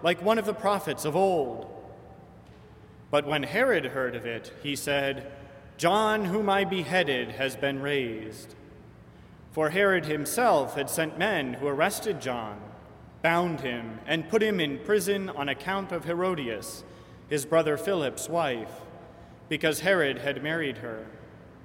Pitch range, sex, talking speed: 130-190 Hz, male, 140 wpm